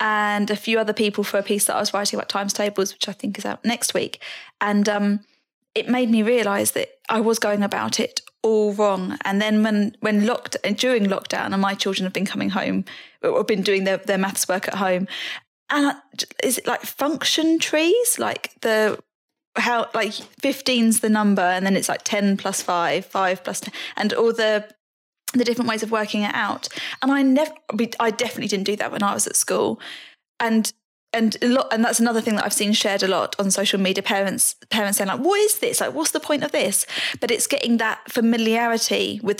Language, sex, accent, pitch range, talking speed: English, female, British, 200-235 Hz, 220 wpm